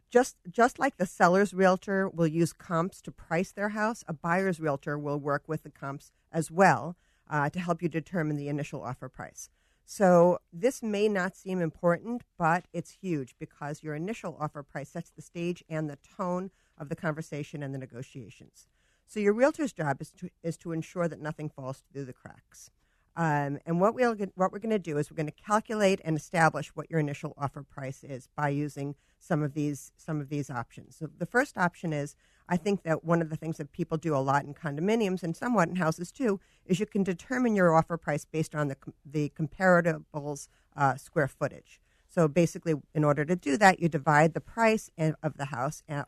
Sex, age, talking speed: female, 50-69, 210 wpm